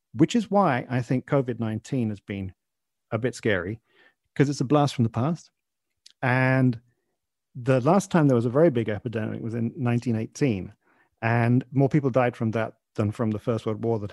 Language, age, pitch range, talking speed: English, 40-59, 110-150 Hz, 185 wpm